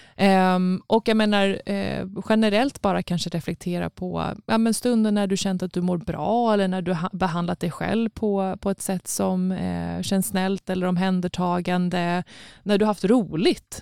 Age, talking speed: 20-39, 160 wpm